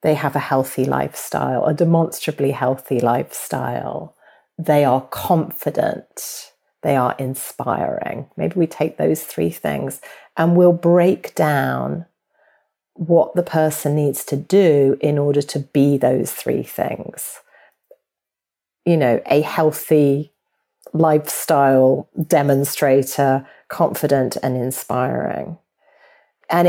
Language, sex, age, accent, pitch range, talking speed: English, female, 40-59, British, 140-175 Hz, 110 wpm